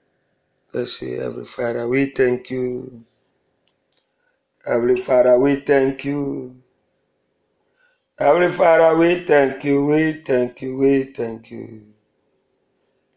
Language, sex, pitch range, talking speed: English, male, 125-145 Hz, 110 wpm